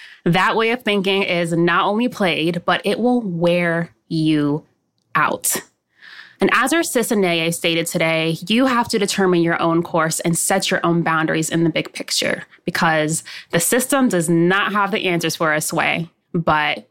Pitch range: 170-210 Hz